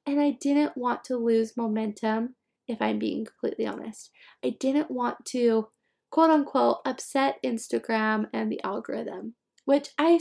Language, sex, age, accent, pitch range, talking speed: English, female, 20-39, American, 225-280 Hz, 145 wpm